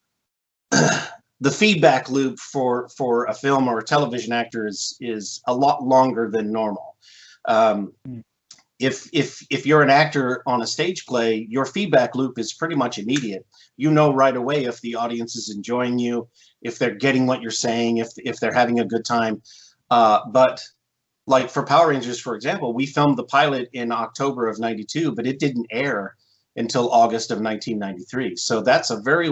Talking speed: 180 wpm